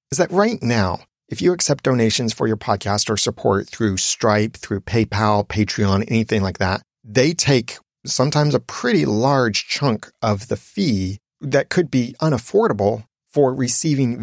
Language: English